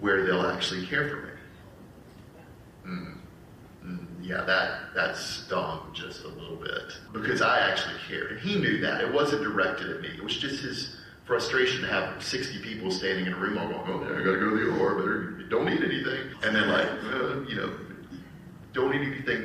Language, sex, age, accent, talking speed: English, male, 30-49, American, 200 wpm